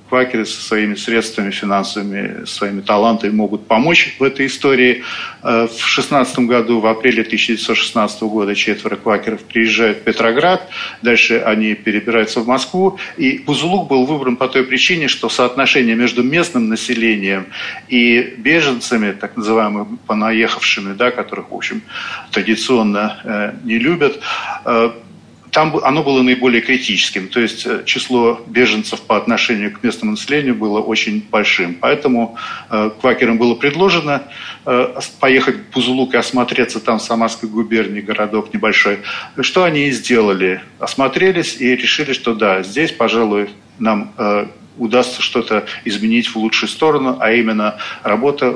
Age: 40-59